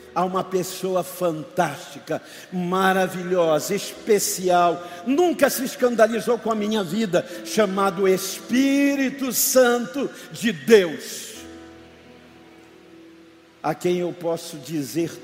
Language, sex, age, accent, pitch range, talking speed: Portuguese, male, 60-79, Brazilian, 165-250 Hz, 90 wpm